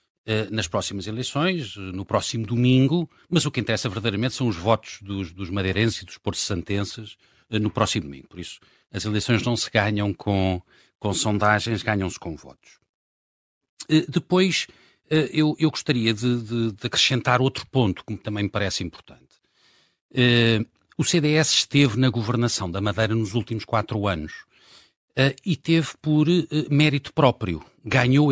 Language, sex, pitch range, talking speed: Portuguese, male, 105-135 Hz, 145 wpm